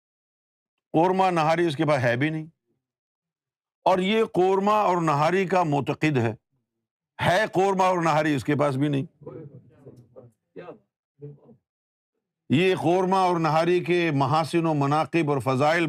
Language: Urdu